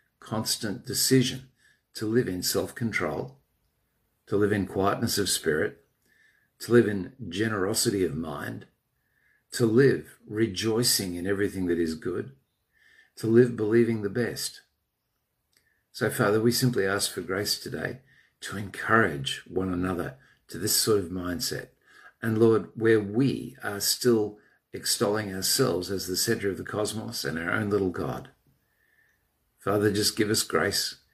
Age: 50-69